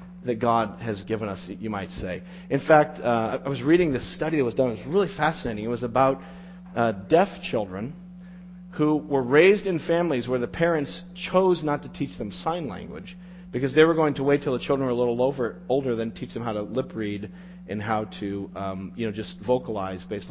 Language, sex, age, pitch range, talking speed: English, male, 40-59, 125-180 Hz, 220 wpm